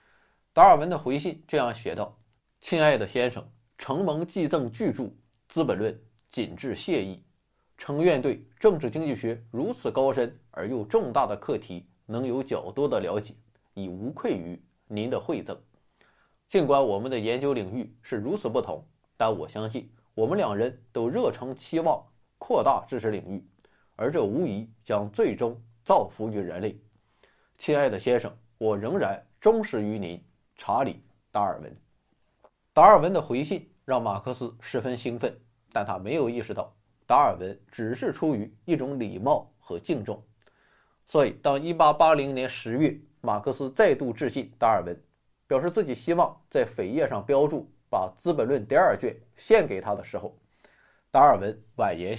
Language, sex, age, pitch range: Chinese, male, 20-39, 110-140 Hz